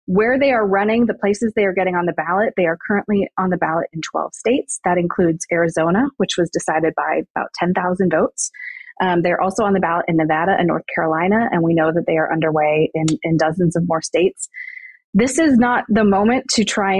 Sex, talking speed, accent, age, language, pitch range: female, 220 wpm, American, 30-49, English, 175-220 Hz